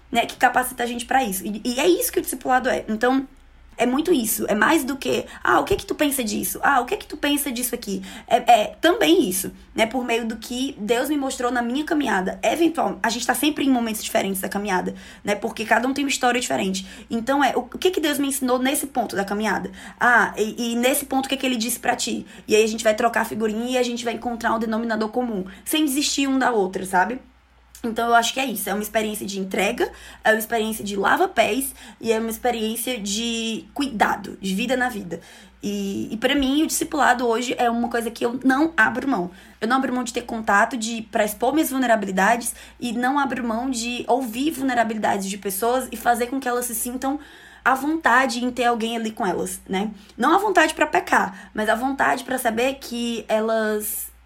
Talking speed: 235 wpm